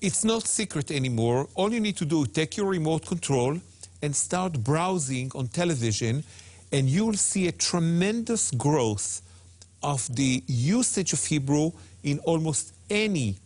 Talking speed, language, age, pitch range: 145 wpm, English, 50-69, 115-175 Hz